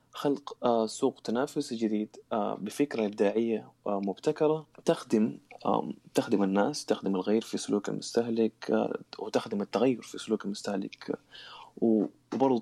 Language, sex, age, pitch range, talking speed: Arabic, male, 20-39, 105-125 Hz, 100 wpm